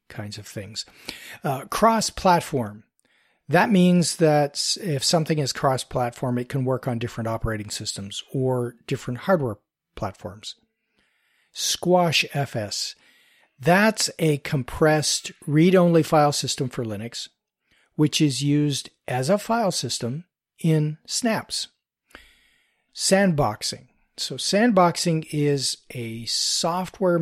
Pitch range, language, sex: 125-165 Hz, English, male